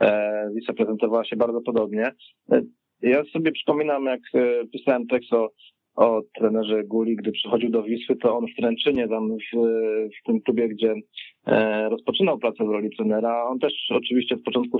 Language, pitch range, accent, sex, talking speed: Polish, 115-130 Hz, native, male, 160 wpm